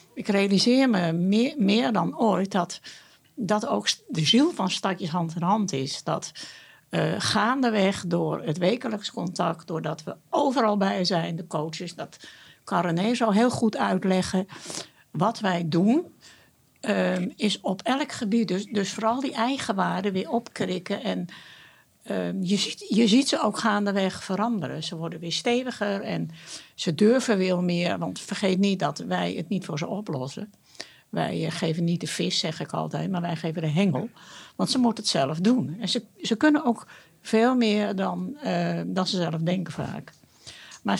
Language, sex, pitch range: Dutch, female, 175-220 Hz